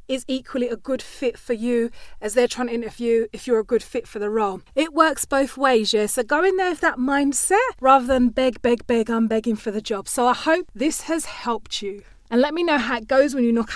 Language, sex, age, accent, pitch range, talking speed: English, female, 20-39, British, 230-300 Hz, 255 wpm